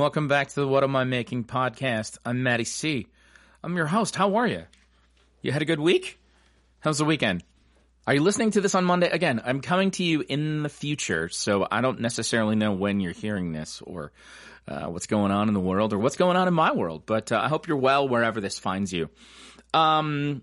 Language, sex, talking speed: English, male, 225 wpm